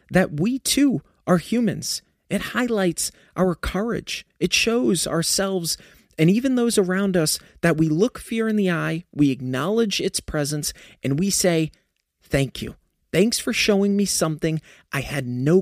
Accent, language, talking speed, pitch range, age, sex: American, English, 160 wpm, 145-195 Hz, 30-49, male